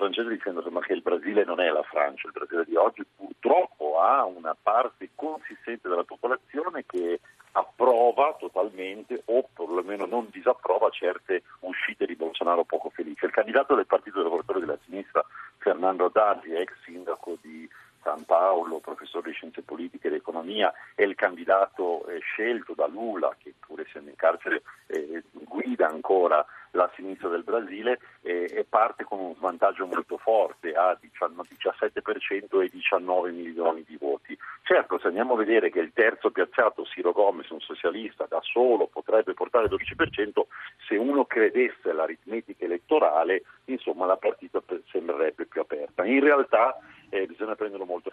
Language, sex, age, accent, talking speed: Italian, male, 50-69, native, 150 wpm